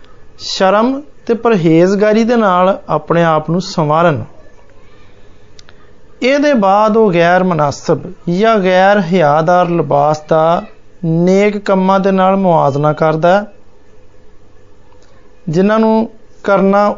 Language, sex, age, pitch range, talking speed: Hindi, male, 30-49, 155-210 Hz, 60 wpm